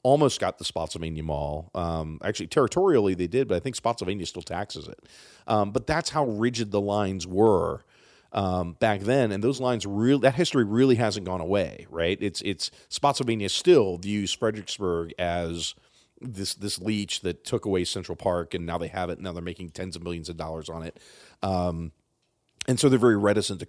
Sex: male